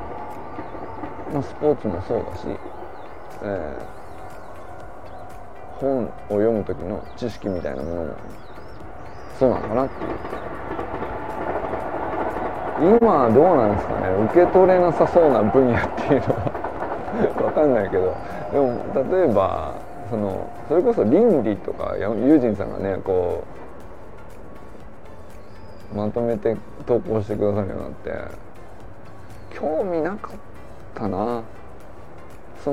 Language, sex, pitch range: Japanese, male, 95-120 Hz